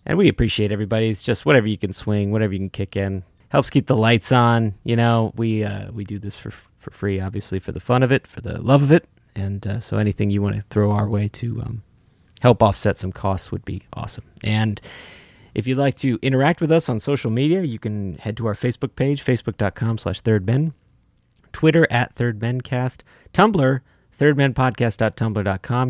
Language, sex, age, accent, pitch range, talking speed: English, male, 30-49, American, 100-125 Hz, 200 wpm